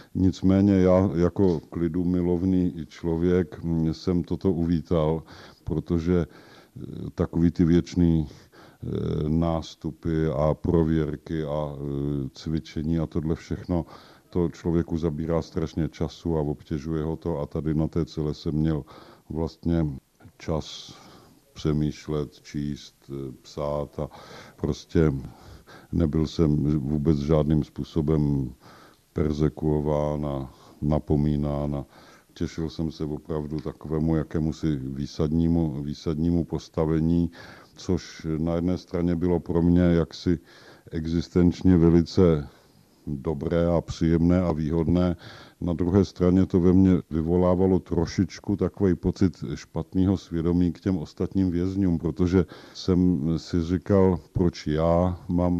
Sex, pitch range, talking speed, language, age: male, 75-90 Hz, 105 wpm, Czech, 50-69